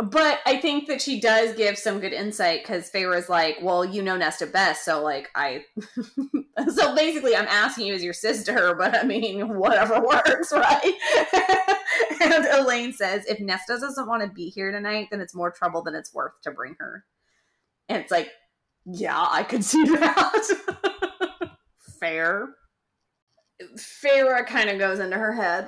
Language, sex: English, female